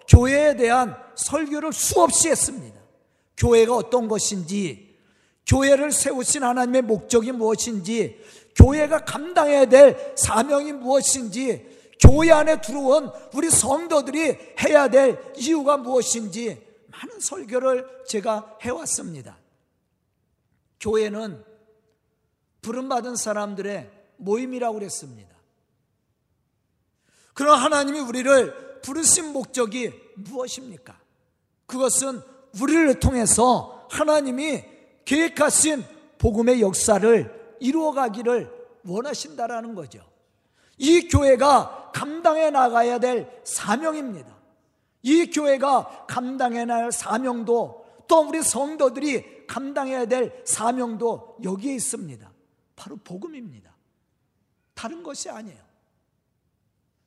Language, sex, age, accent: Korean, male, 40-59, native